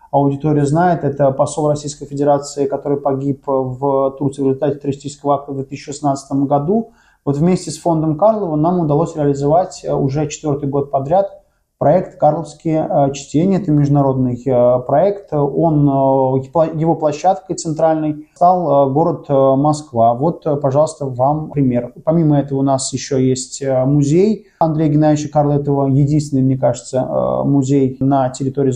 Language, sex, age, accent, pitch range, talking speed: Russian, male, 20-39, native, 135-160 Hz, 130 wpm